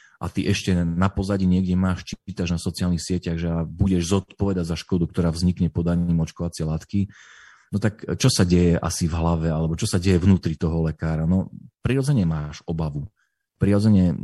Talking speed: 175 wpm